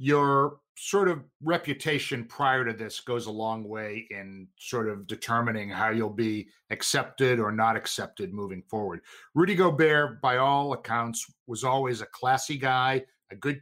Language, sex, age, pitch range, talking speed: English, male, 50-69, 115-145 Hz, 160 wpm